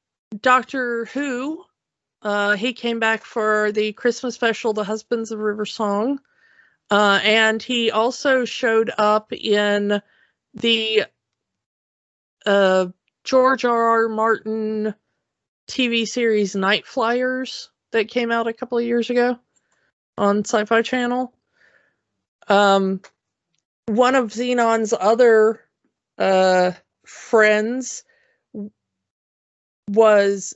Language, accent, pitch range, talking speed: English, American, 195-230 Hz, 100 wpm